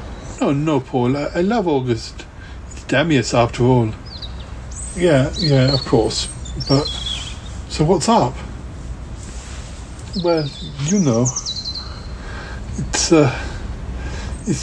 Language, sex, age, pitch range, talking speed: English, male, 60-79, 115-145 Hz, 105 wpm